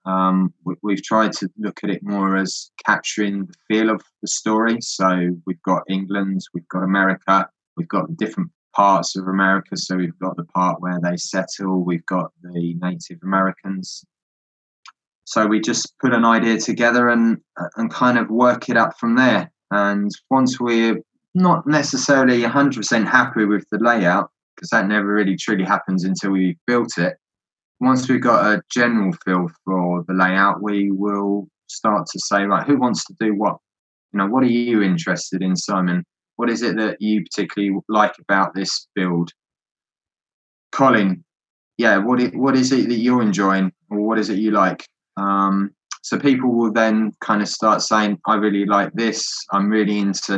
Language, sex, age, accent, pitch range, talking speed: English, male, 20-39, British, 95-110 Hz, 175 wpm